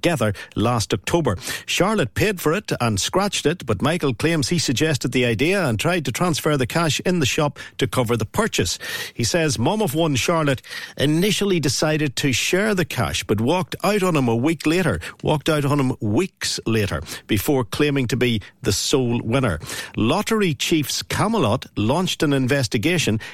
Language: English